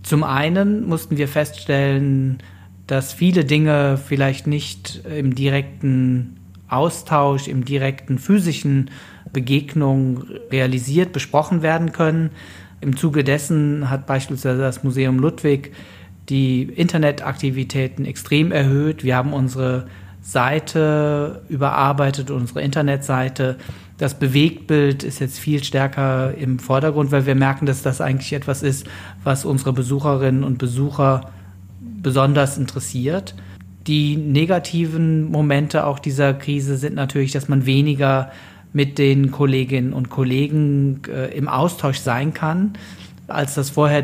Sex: male